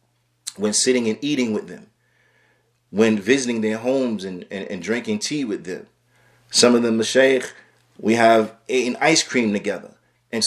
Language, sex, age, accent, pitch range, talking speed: English, male, 30-49, American, 110-140 Hz, 160 wpm